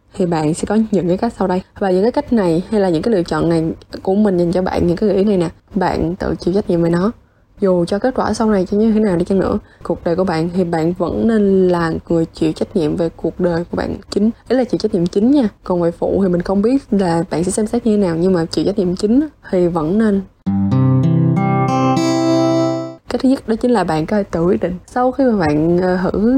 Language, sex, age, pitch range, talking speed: Vietnamese, female, 20-39, 170-220 Hz, 270 wpm